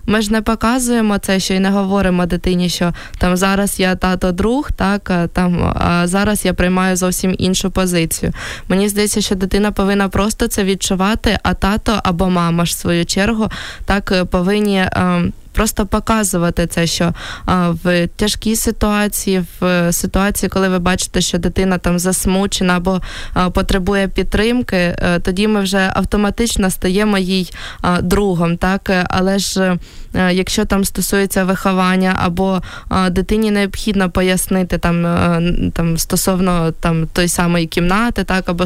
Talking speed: 145 wpm